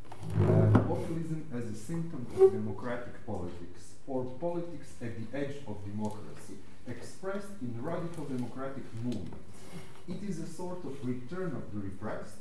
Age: 40-59